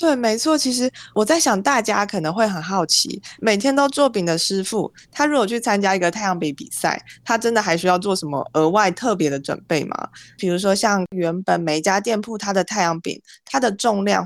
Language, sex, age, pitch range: Chinese, female, 20-39, 170-220 Hz